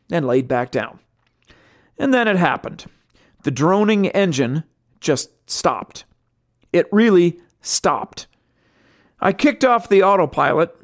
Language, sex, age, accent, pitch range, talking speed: English, male, 40-59, American, 150-205 Hz, 115 wpm